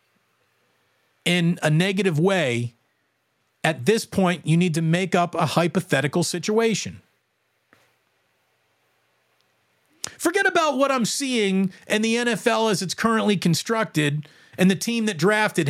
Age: 40-59